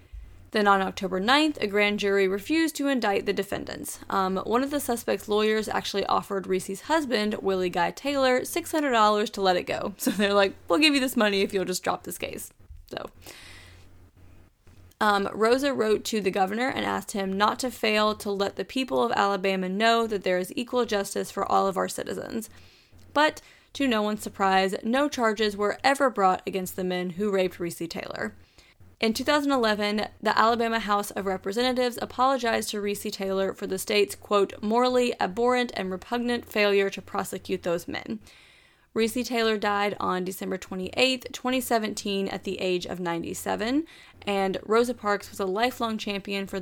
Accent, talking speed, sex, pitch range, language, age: American, 175 wpm, female, 190-235 Hz, English, 10-29